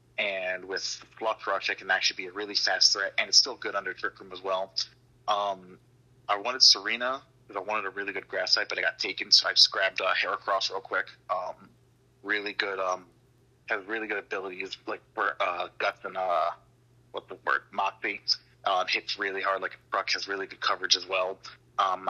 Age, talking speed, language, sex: 30-49, 210 wpm, English, male